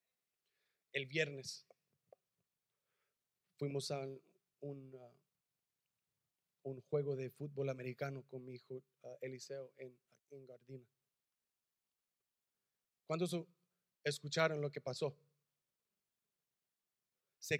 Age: 30-49